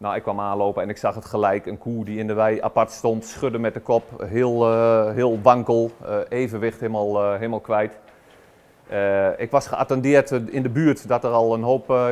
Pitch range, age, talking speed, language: 105-120 Hz, 40-59, 220 wpm, Dutch